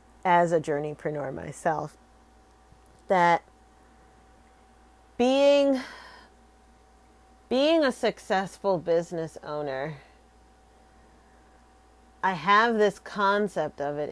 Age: 30-49